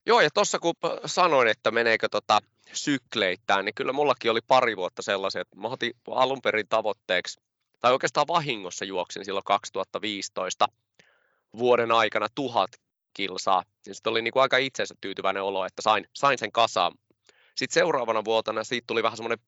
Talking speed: 150 wpm